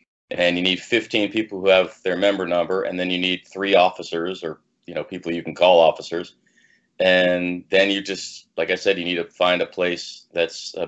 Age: 30-49